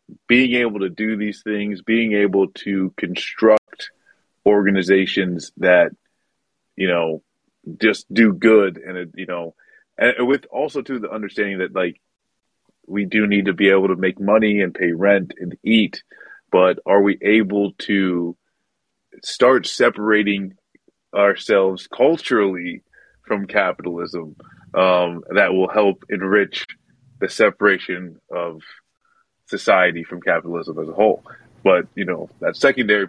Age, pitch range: 30-49, 95-115 Hz